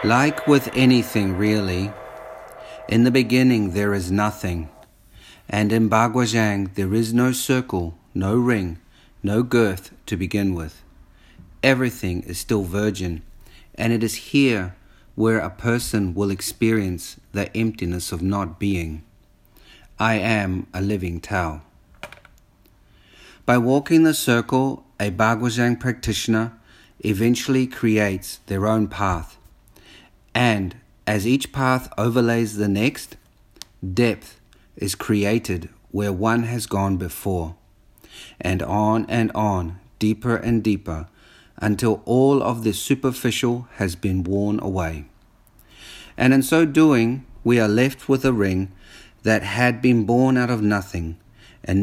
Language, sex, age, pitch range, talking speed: English, male, 50-69, 95-120 Hz, 125 wpm